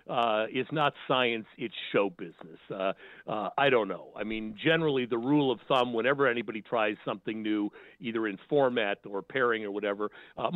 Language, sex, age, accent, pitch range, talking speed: English, male, 50-69, American, 105-145 Hz, 180 wpm